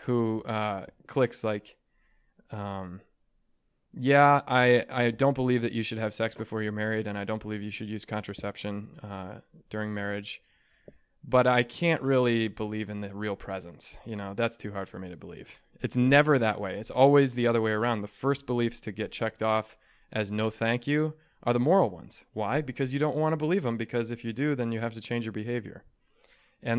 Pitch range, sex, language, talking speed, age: 105-125 Hz, male, English, 205 wpm, 20-39